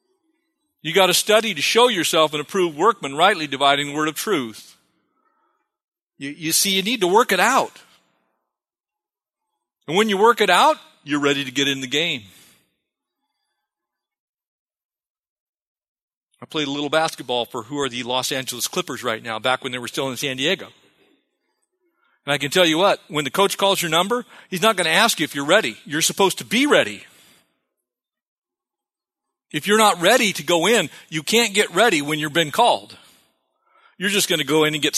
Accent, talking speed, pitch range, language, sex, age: American, 185 wpm, 140-215 Hz, English, male, 40-59